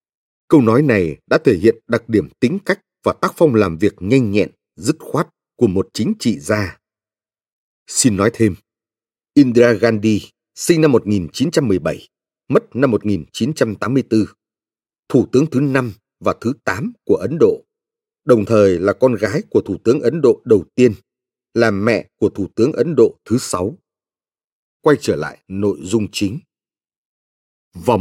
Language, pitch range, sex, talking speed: Vietnamese, 105-135 Hz, male, 155 wpm